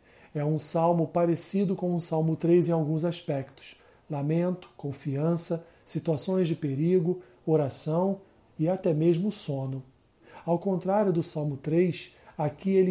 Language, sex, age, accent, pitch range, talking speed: Portuguese, male, 40-59, Brazilian, 155-195 Hz, 130 wpm